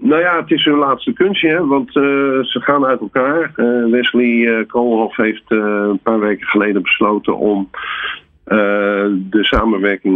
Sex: male